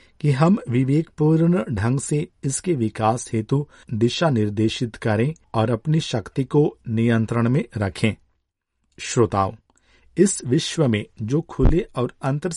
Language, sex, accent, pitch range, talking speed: Hindi, male, native, 110-145 Hz, 130 wpm